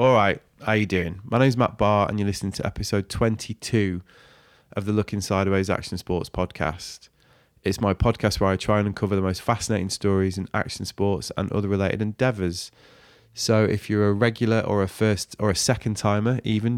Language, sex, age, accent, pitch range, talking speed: English, male, 20-39, British, 95-110 Hz, 200 wpm